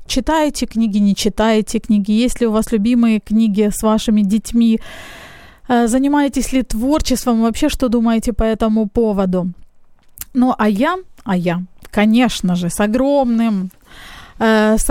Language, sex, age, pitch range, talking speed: Ukrainian, female, 20-39, 215-255 Hz, 135 wpm